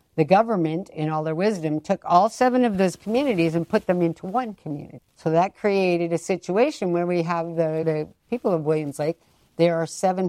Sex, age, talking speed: female, 60-79, 205 wpm